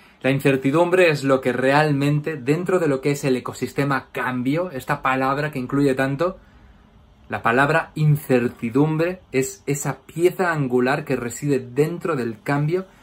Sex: male